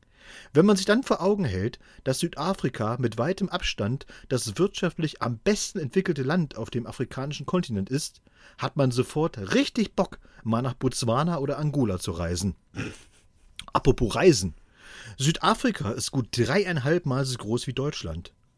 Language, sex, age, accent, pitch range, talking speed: German, male, 40-59, German, 115-180 Hz, 145 wpm